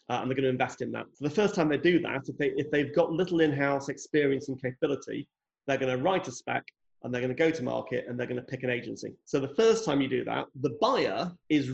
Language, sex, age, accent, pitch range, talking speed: English, male, 30-49, British, 130-170 Hz, 285 wpm